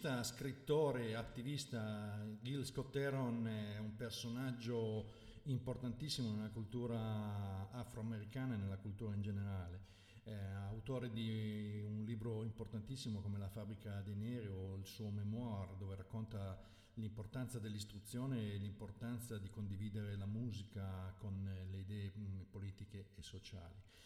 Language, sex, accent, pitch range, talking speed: Italian, male, native, 100-120 Hz, 120 wpm